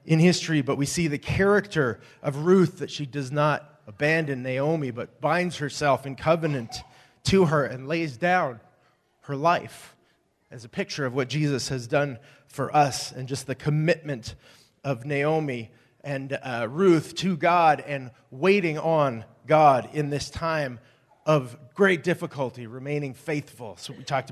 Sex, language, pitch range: male, English, 135-165 Hz